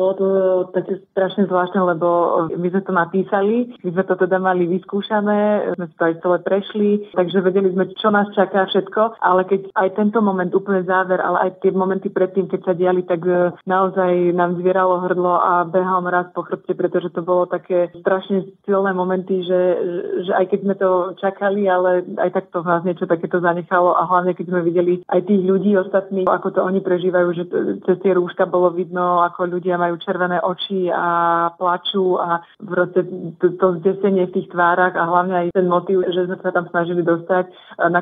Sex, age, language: female, 20-39, Slovak